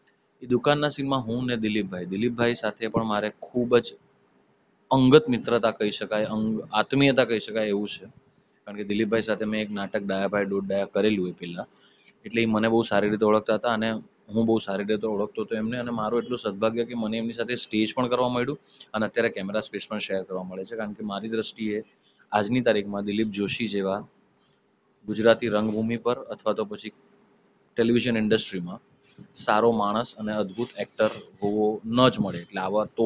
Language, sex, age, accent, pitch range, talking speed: English, male, 20-39, Indian, 105-120 Hz, 70 wpm